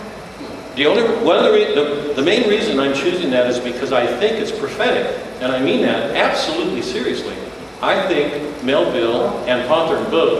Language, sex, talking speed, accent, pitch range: English, male, 180 wpm, American, 125-210 Hz